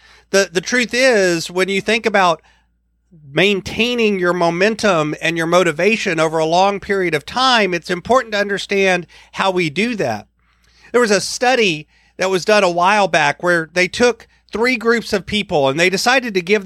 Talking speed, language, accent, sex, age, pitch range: 175 wpm, English, American, male, 40-59, 170-210 Hz